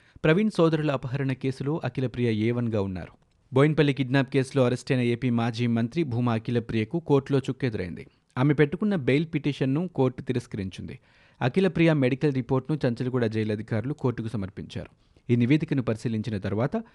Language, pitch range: Telugu, 115-145 Hz